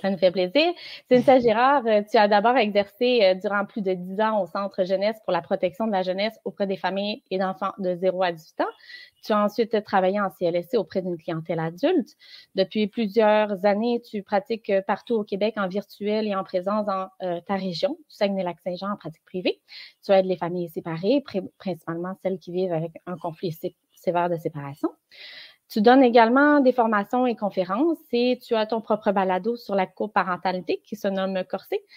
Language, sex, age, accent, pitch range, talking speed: French, female, 30-49, Canadian, 185-230 Hz, 190 wpm